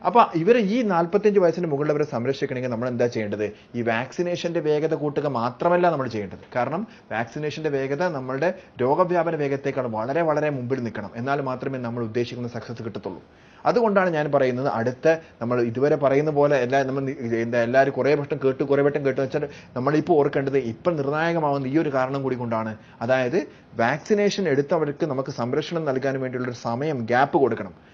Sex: male